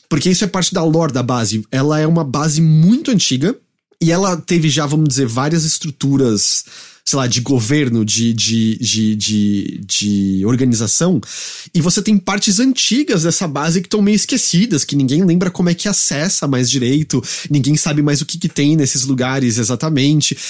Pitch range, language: 135-195 Hz, English